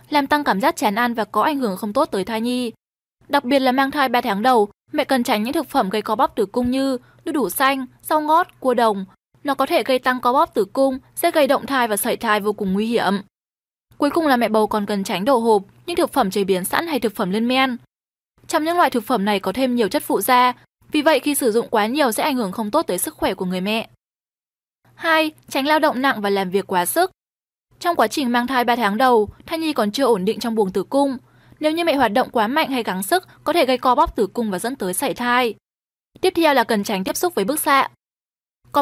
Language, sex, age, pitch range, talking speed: Vietnamese, female, 10-29, 220-295 Hz, 270 wpm